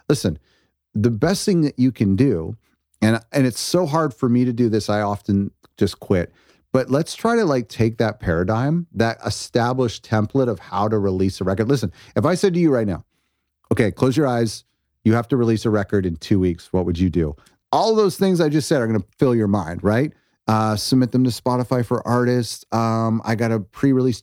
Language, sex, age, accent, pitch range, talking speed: English, male, 30-49, American, 100-130 Hz, 225 wpm